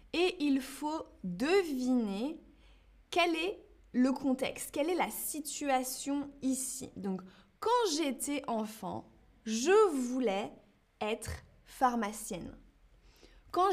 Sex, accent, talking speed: female, French, 95 wpm